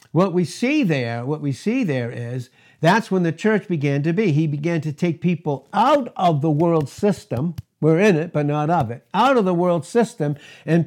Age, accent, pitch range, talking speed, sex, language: 60-79, American, 145-190 Hz, 215 wpm, male, English